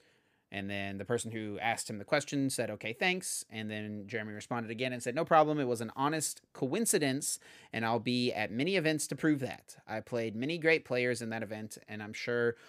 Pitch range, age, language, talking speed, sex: 115-145 Hz, 30-49, English, 220 wpm, male